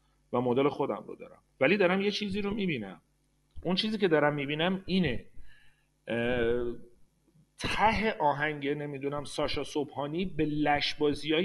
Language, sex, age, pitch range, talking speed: Persian, male, 40-59, 145-190 Hz, 130 wpm